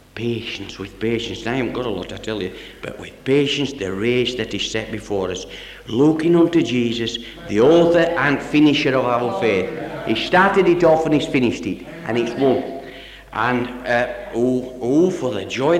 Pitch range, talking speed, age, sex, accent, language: 120-160 Hz, 185 wpm, 60-79, male, British, English